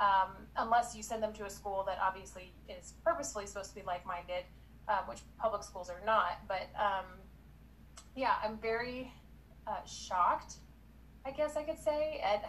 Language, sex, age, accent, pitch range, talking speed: English, female, 30-49, American, 200-230 Hz, 170 wpm